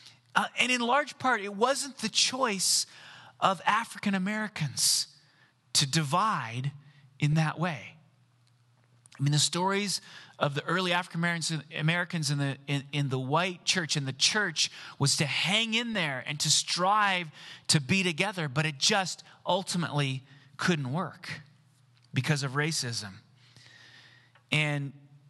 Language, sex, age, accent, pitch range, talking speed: English, male, 30-49, American, 140-190 Hz, 125 wpm